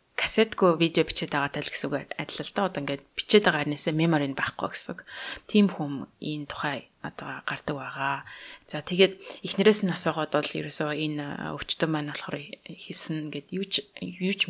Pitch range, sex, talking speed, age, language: 145-180 Hz, female, 155 wpm, 20-39, English